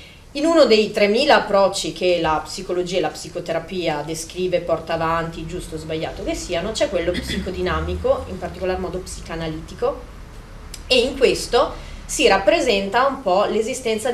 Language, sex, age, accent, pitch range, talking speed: Italian, female, 30-49, native, 170-230 Hz, 145 wpm